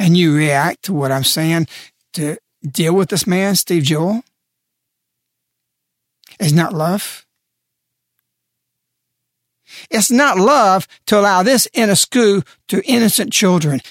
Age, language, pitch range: 60-79, English, 155-235 Hz